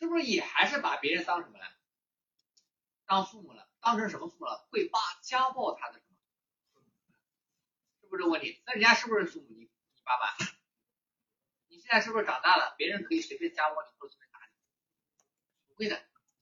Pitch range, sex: 200-335 Hz, male